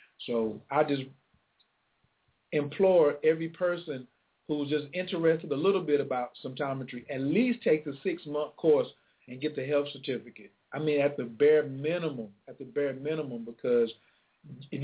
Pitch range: 135-170 Hz